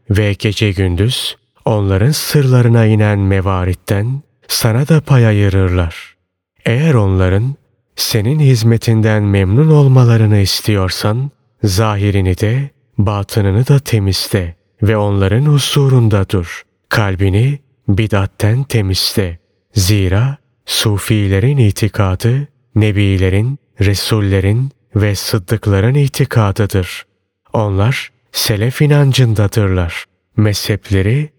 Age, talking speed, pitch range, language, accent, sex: 30-49, 80 wpm, 100-125 Hz, Turkish, native, male